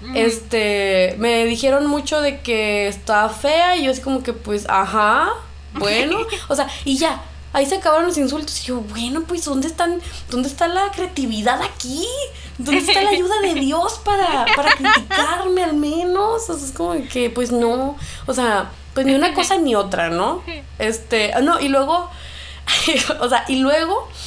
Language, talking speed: Spanish, 175 wpm